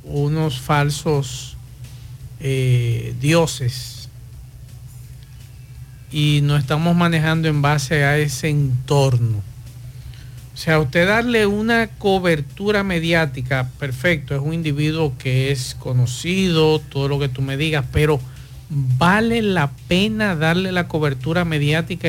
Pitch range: 125-175 Hz